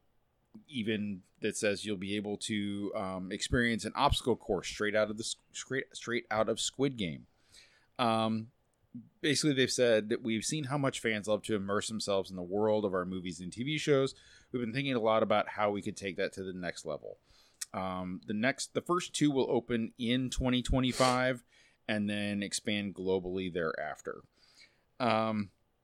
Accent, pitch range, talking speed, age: American, 100-125 Hz, 175 wpm, 30-49